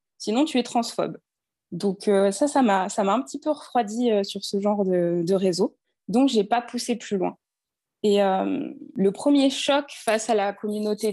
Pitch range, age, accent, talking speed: 200-250 Hz, 20-39, French, 215 wpm